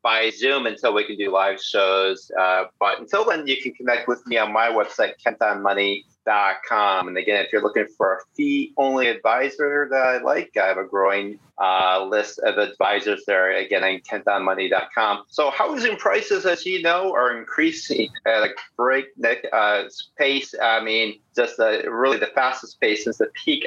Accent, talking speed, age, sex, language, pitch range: American, 180 wpm, 30-49, male, English, 105-150 Hz